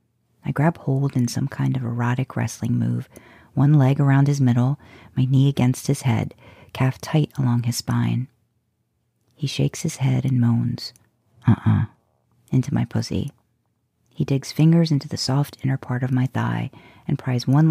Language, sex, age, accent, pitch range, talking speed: English, female, 40-59, American, 115-140 Hz, 170 wpm